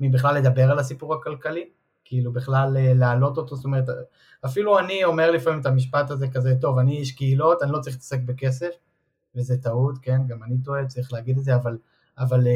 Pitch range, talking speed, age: 125-145 Hz, 190 wpm, 20-39